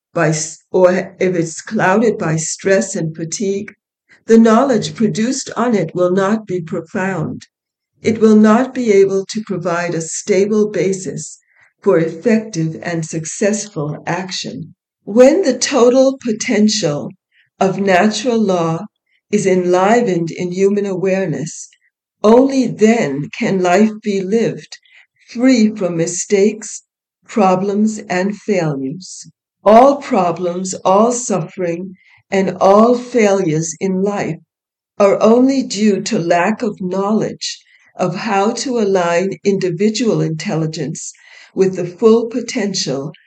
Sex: female